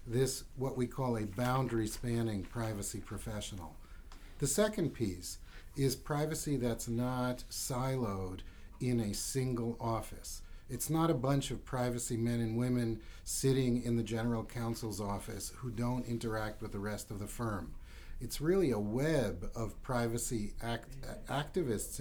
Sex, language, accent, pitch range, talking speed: male, English, American, 105-130 Hz, 140 wpm